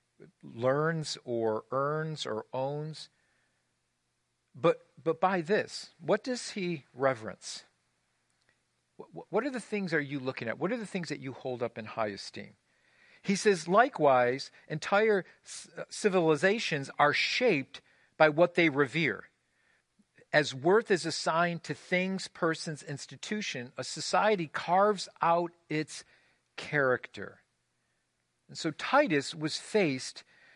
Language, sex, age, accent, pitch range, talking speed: English, male, 50-69, American, 125-170 Hz, 125 wpm